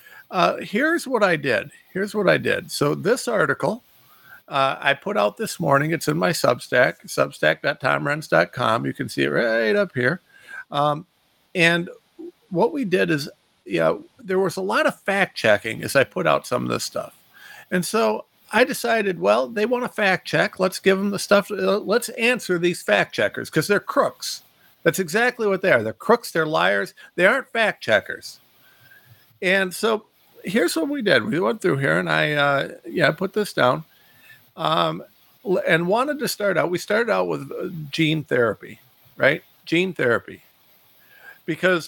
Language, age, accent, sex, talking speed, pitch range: English, 50-69, American, male, 170 wpm, 170-230 Hz